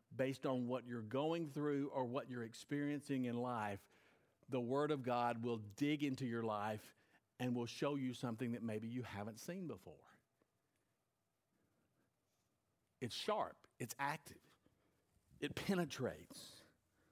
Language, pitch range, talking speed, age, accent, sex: English, 115-150 Hz, 135 wpm, 50-69, American, male